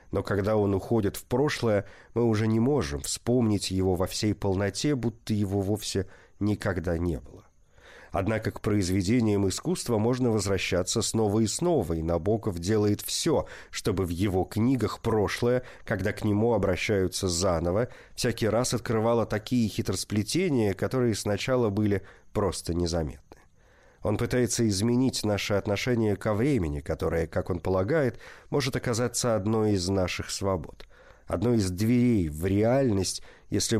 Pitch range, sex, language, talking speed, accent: 95-120 Hz, male, Russian, 135 wpm, native